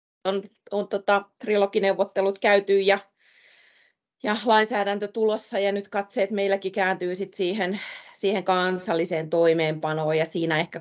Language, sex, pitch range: Finnish, female, 165-200 Hz